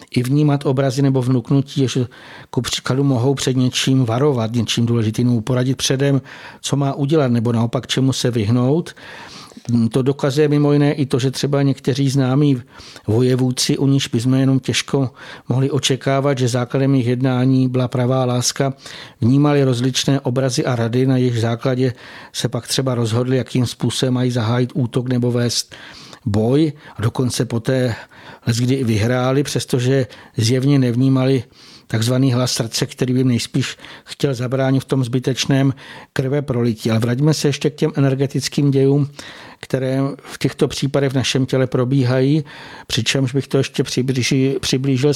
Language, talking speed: Czech, 150 wpm